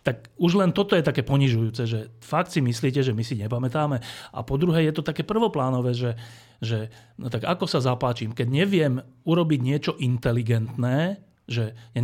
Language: Slovak